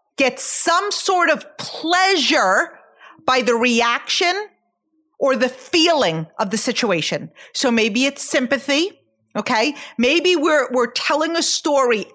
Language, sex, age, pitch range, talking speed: English, female, 40-59, 230-345 Hz, 125 wpm